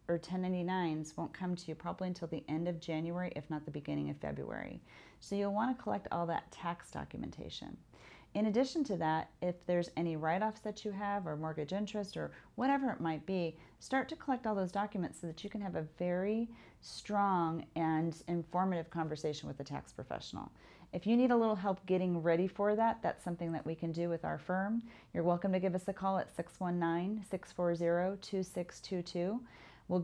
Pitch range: 170-200 Hz